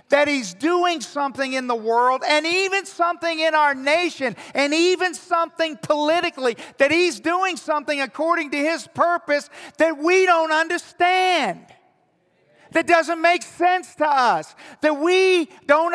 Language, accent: English, American